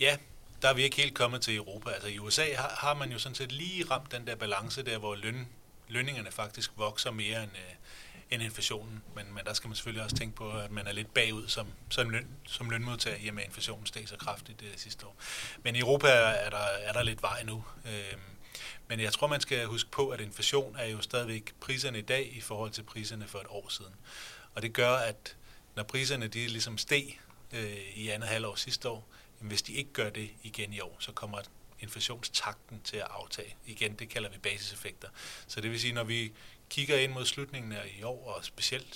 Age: 30-49